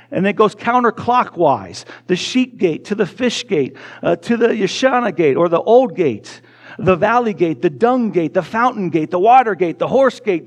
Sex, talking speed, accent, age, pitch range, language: male, 200 wpm, American, 50-69, 180-240 Hz, English